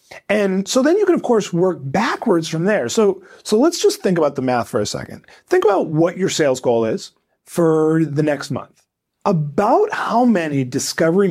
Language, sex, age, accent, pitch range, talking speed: English, male, 30-49, American, 145-215 Hz, 195 wpm